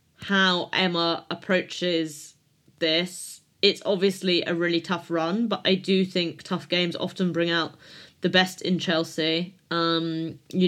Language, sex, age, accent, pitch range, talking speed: English, female, 20-39, British, 165-195 Hz, 140 wpm